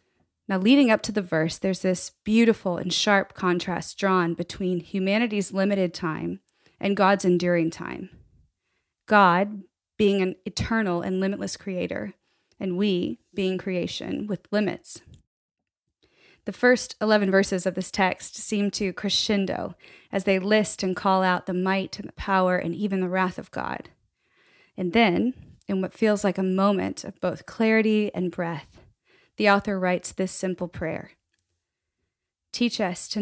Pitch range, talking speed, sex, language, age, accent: 180-205 Hz, 150 wpm, female, English, 20-39, American